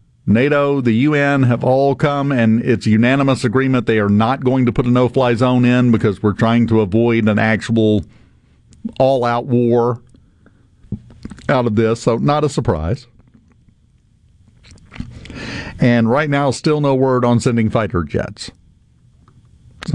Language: English